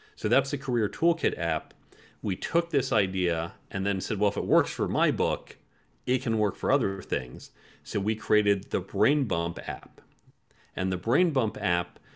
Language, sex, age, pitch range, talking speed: English, male, 40-59, 95-120 Hz, 190 wpm